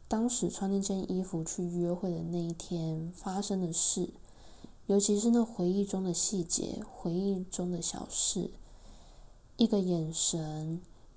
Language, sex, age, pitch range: Chinese, female, 20-39, 175-200 Hz